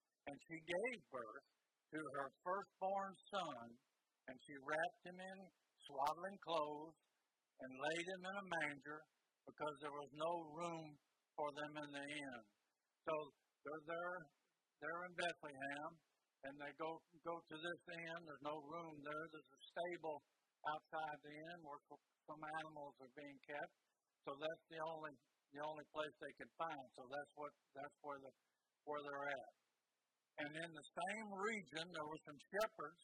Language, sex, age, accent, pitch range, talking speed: English, male, 60-79, American, 145-170 Hz, 160 wpm